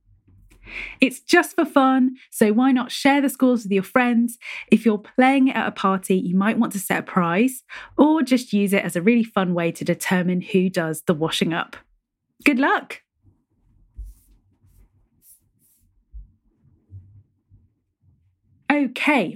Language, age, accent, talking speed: English, 30-49, British, 140 wpm